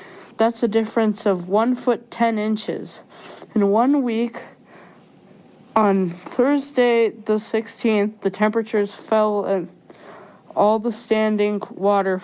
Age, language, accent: 20-39, English, American